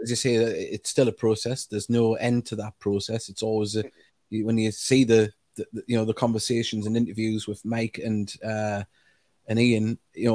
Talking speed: 205 wpm